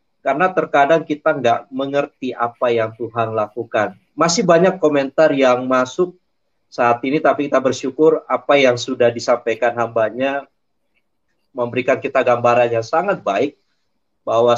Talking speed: 130 wpm